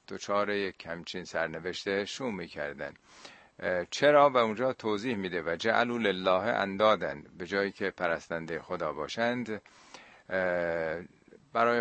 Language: Persian